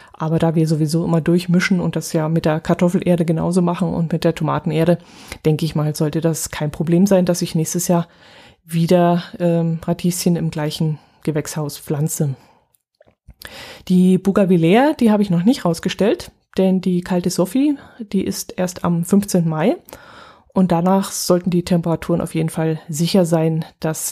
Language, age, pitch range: German, 20-39, 165-205 Hz